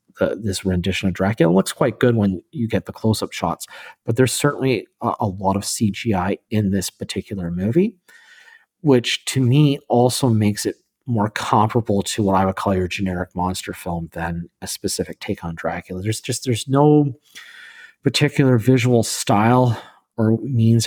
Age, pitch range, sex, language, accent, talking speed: 40-59, 95-120 Hz, male, English, American, 160 wpm